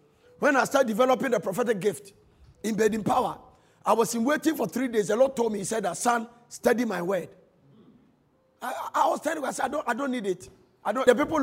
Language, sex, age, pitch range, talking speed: English, male, 50-69, 210-300 Hz, 230 wpm